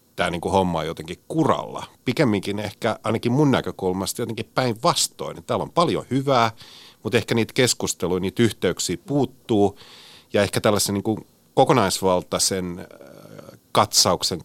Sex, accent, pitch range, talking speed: male, native, 90-115 Hz, 135 wpm